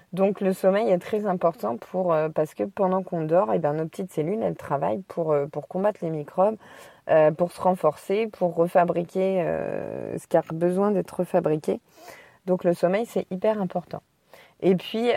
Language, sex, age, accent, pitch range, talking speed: French, female, 20-39, French, 165-190 Hz, 185 wpm